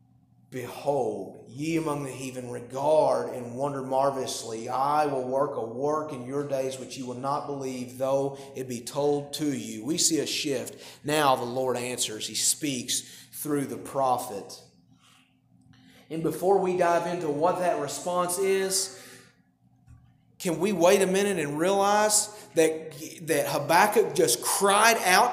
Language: English